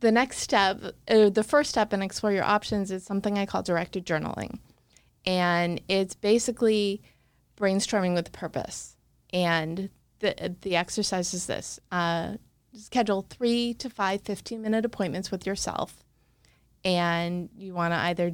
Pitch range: 180-215 Hz